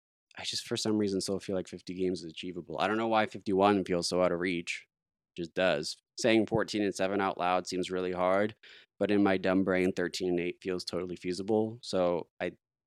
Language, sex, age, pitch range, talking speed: English, male, 20-39, 90-120 Hz, 220 wpm